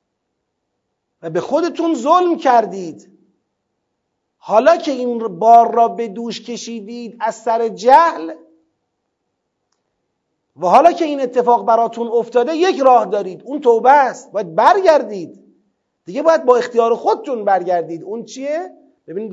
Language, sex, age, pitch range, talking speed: Persian, male, 40-59, 195-265 Hz, 125 wpm